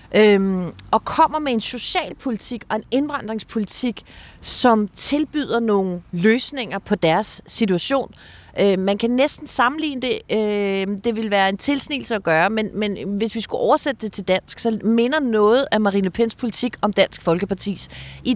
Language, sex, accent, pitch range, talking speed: Danish, female, native, 190-245 Hz, 165 wpm